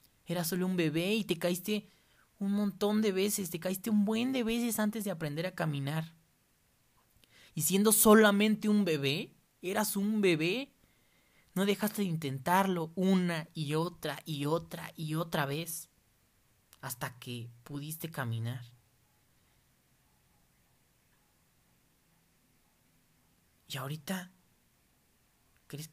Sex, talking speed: male, 115 wpm